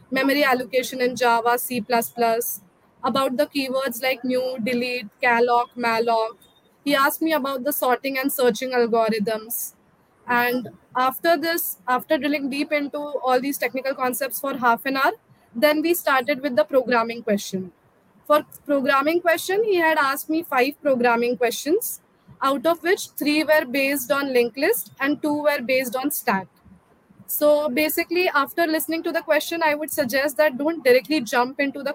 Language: Hindi